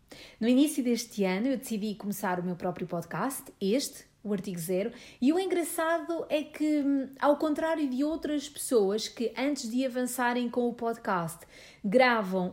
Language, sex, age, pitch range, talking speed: English, female, 40-59, 220-280 Hz, 160 wpm